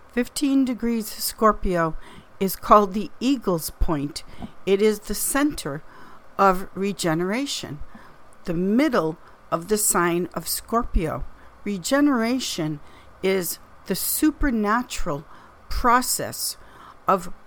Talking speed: 95 wpm